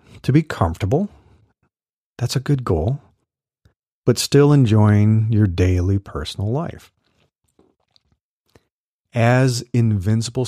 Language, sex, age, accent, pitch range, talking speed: English, male, 40-59, American, 95-120 Hz, 90 wpm